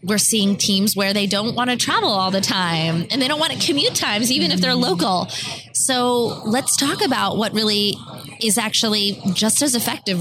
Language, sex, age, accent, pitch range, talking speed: English, female, 20-39, American, 180-240 Hz, 200 wpm